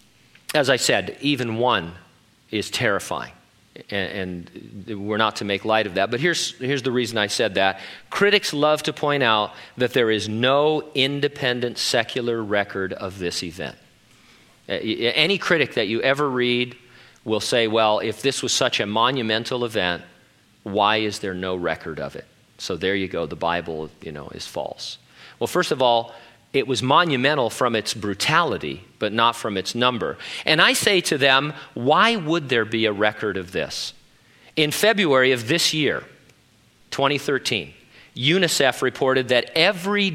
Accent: American